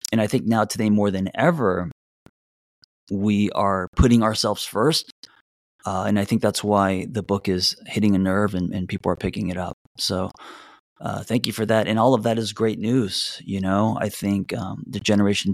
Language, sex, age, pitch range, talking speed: English, male, 30-49, 90-110 Hz, 200 wpm